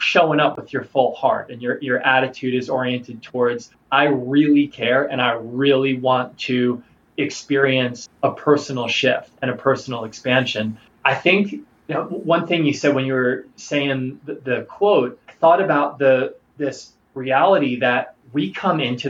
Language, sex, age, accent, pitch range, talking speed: English, male, 20-39, American, 125-145 Hz, 170 wpm